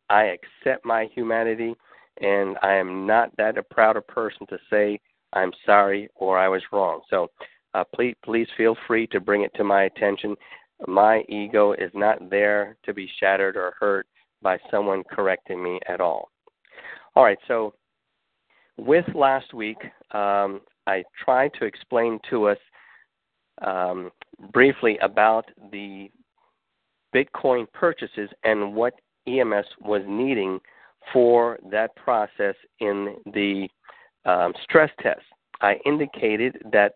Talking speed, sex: 135 wpm, male